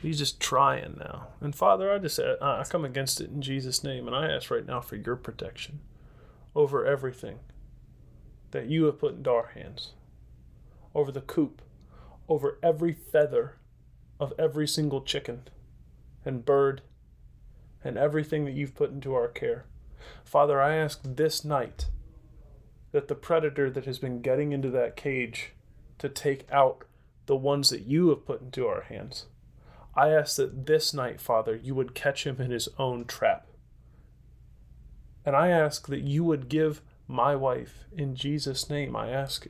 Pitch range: 120-150 Hz